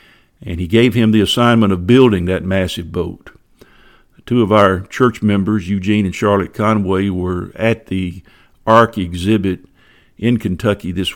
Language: English